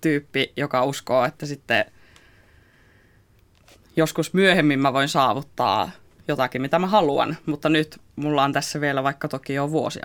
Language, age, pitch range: Finnish, 20-39, 110-145 Hz